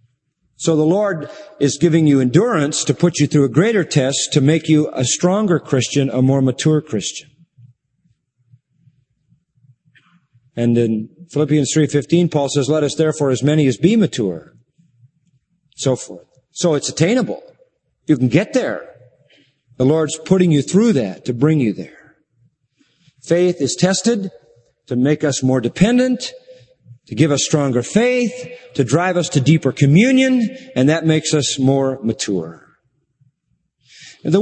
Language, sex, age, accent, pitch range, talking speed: English, male, 50-69, American, 130-170 Hz, 145 wpm